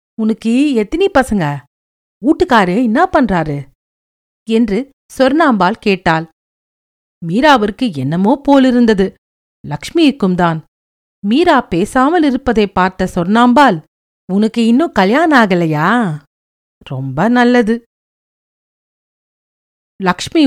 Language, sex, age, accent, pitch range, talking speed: Tamil, female, 50-69, native, 180-275 Hz, 75 wpm